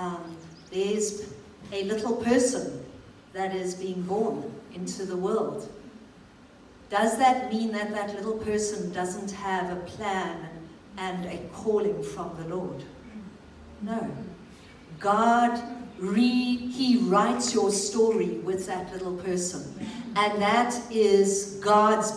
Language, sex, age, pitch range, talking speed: English, female, 50-69, 185-215 Hz, 115 wpm